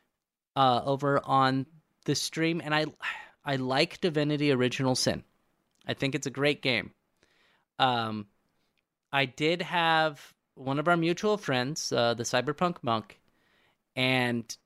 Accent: American